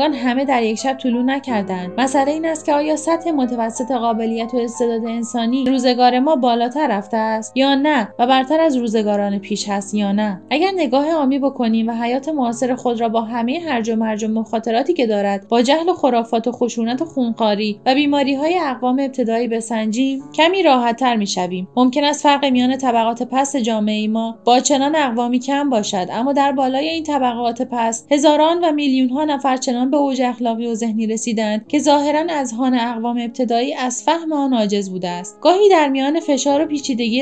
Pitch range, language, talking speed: 230-285 Hz, Persian, 180 wpm